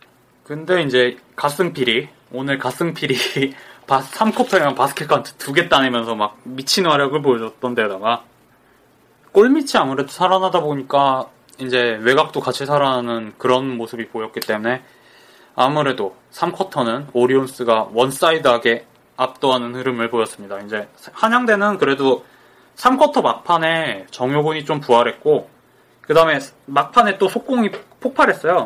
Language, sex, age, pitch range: Korean, male, 20-39, 125-185 Hz